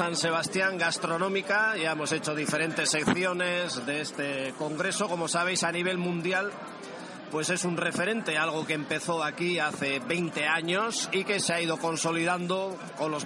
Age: 40-59